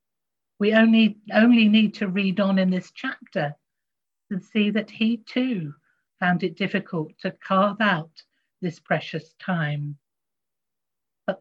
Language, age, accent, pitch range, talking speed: English, 50-69, British, 170-220 Hz, 130 wpm